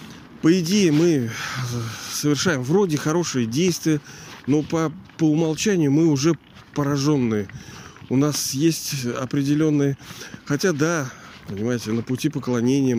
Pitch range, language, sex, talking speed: 120-150 Hz, Russian, male, 110 wpm